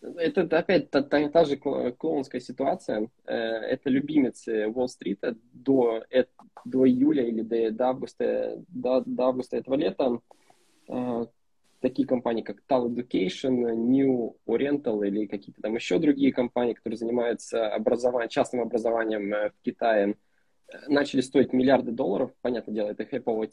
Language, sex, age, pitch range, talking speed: Russian, male, 20-39, 115-140 Hz, 130 wpm